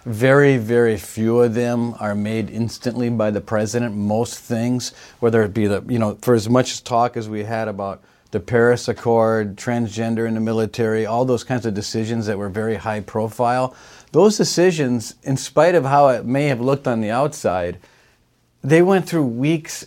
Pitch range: 110-130 Hz